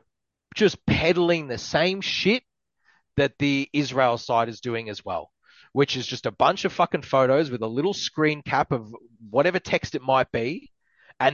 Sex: male